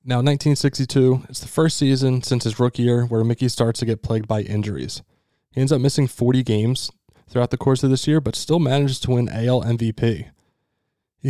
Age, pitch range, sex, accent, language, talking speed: 20-39, 115-130 Hz, male, American, English, 200 wpm